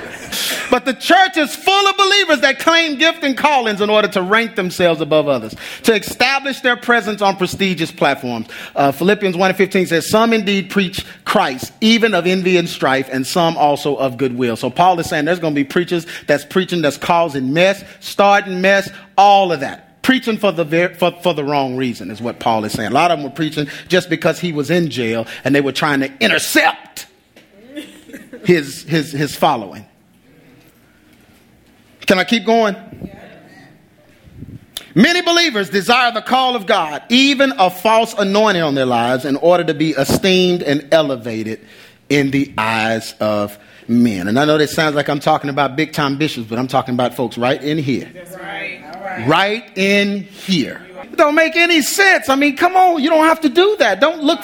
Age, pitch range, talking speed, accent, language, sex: 40-59, 145-240 Hz, 185 wpm, American, English, male